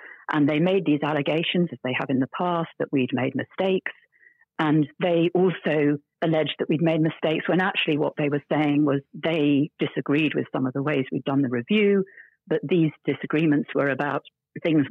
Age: 50-69